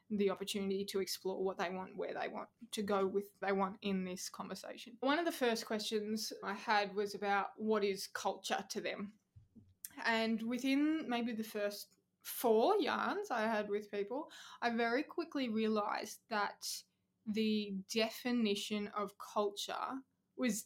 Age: 20-39